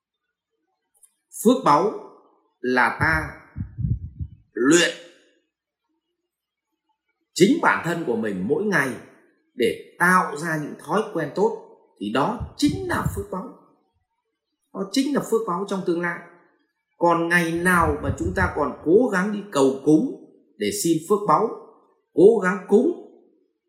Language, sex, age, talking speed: Vietnamese, male, 30-49, 130 wpm